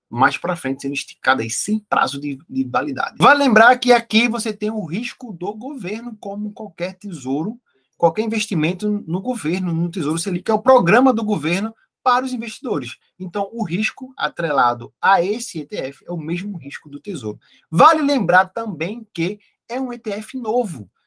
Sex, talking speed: male, 175 wpm